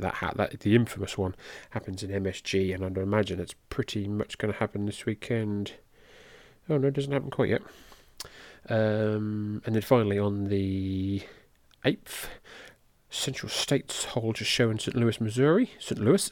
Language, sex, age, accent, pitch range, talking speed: English, male, 30-49, British, 105-140 Hz, 160 wpm